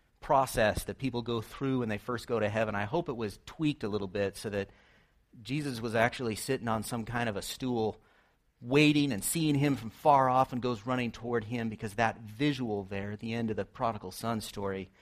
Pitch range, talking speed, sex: 105-135 Hz, 220 wpm, male